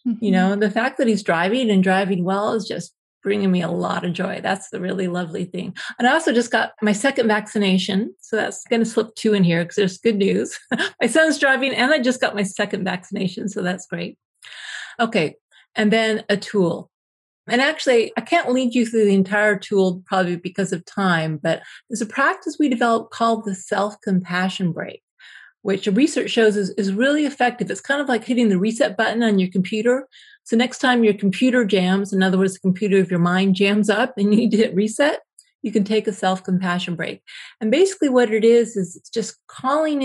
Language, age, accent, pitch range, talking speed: English, 40-59, American, 190-235 Hz, 210 wpm